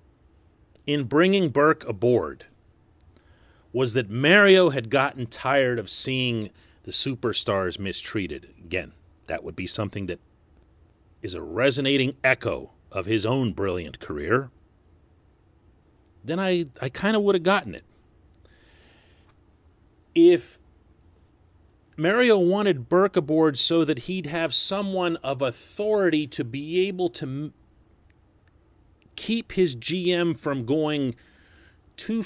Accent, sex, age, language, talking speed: American, male, 40-59, English, 110 wpm